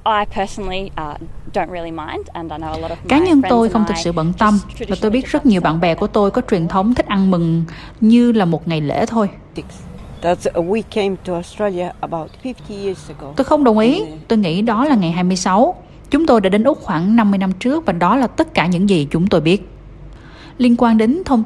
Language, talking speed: Vietnamese, 175 wpm